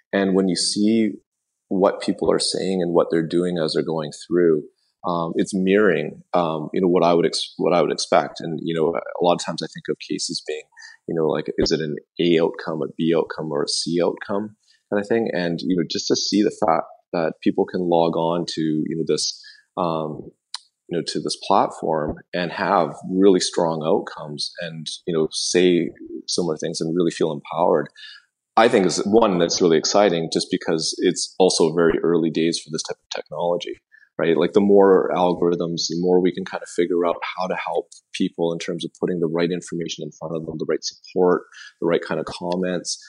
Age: 30-49